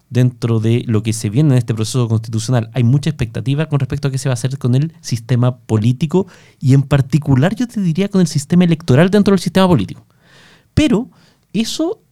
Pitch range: 125-170 Hz